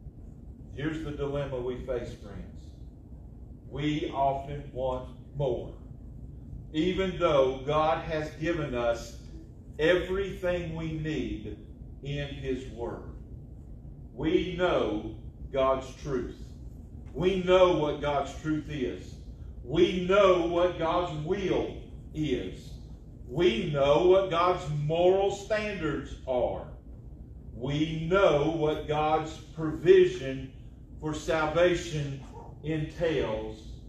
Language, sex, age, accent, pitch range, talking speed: English, male, 40-59, American, 120-160 Hz, 95 wpm